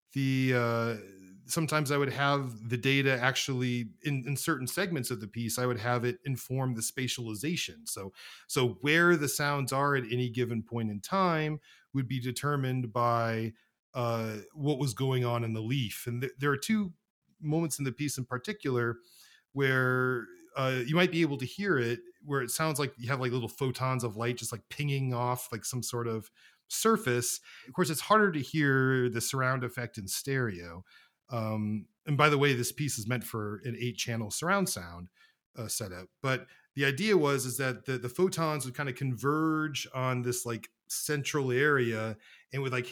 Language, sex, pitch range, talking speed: English, male, 120-145 Hz, 190 wpm